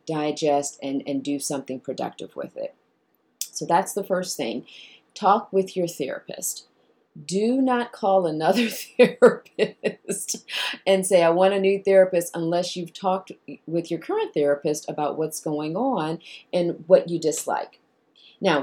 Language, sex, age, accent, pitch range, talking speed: English, female, 30-49, American, 150-200 Hz, 145 wpm